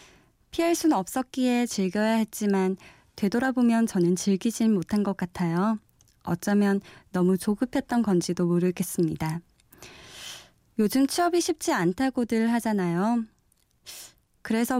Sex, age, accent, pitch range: female, 20-39, native, 190-260 Hz